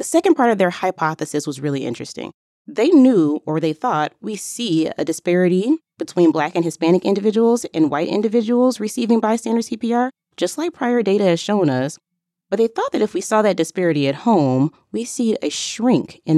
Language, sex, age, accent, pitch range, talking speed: English, female, 20-39, American, 155-210 Hz, 190 wpm